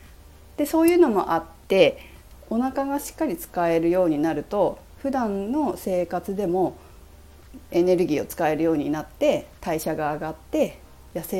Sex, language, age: female, Japanese, 40-59